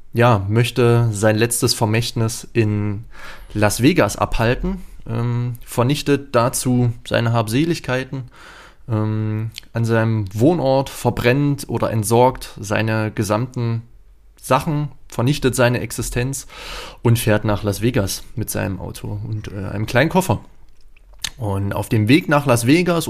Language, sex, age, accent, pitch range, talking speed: German, male, 20-39, German, 110-125 Hz, 120 wpm